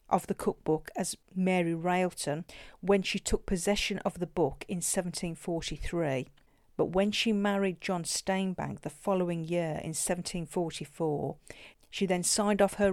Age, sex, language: 50-69, female, English